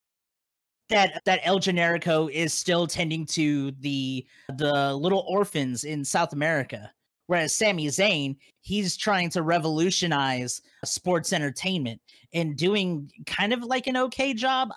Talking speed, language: 130 wpm, English